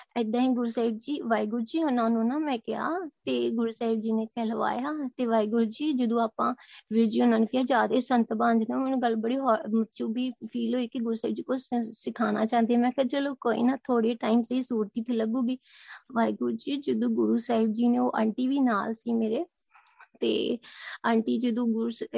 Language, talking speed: Punjabi, 150 wpm